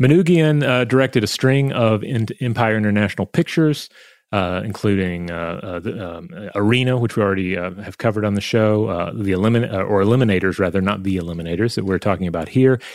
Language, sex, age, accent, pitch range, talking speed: English, male, 30-49, American, 95-125 Hz, 185 wpm